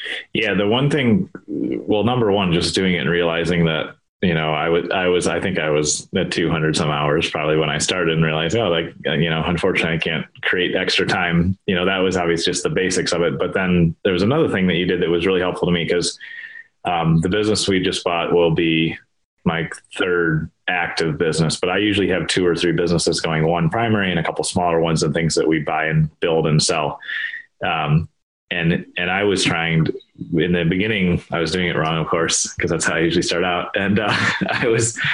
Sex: male